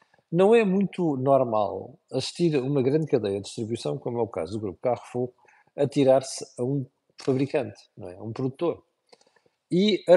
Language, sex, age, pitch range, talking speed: Portuguese, male, 50-69, 130-175 Hz, 175 wpm